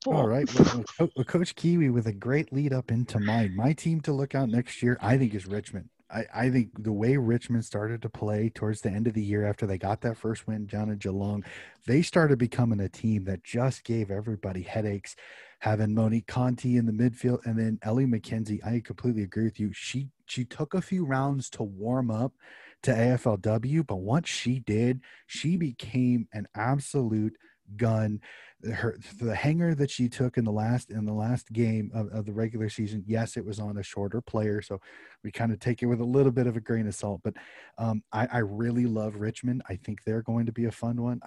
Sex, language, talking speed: male, English, 215 wpm